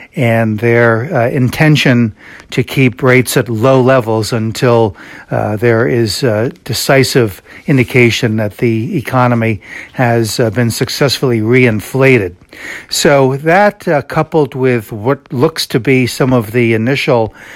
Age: 60-79